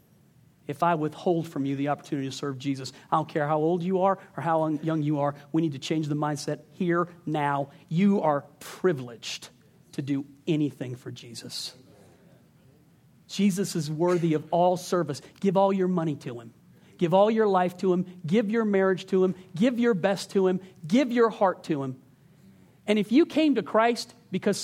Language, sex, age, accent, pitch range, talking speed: English, male, 40-59, American, 145-195 Hz, 190 wpm